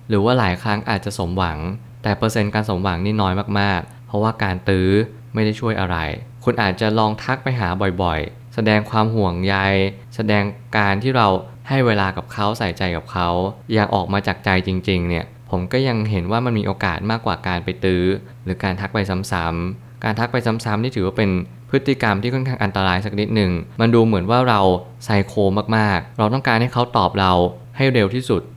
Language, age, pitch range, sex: Thai, 20-39, 95-115 Hz, male